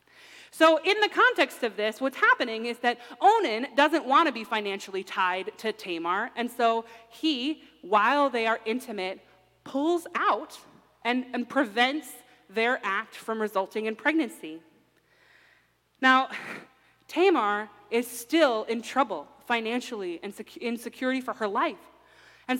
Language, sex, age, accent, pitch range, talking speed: English, female, 30-49, American, 210-280 Hz, 135 wpm